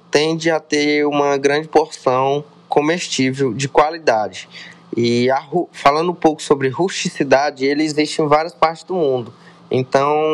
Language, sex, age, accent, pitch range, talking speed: Portuguese, male, 20-39, Brazilian, 135-165 Hz, 135 wpm